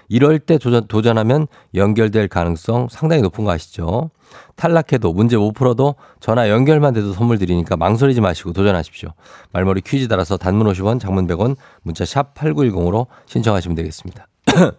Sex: male